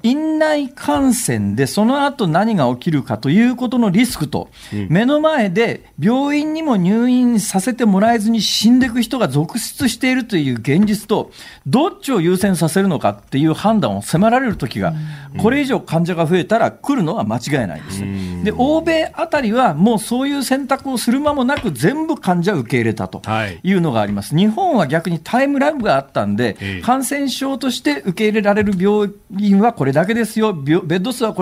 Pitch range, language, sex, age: 145-245 Hz, Japanese, male, 40-59